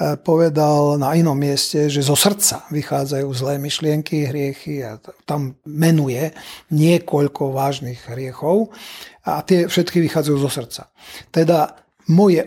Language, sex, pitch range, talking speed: Slovak, male, 145-175 Hz, 120 wpm